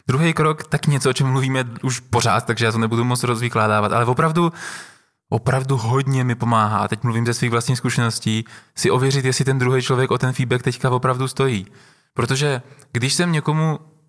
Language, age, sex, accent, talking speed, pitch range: Czech, 20-39, male, native, 185 wpm, 125-150 Hz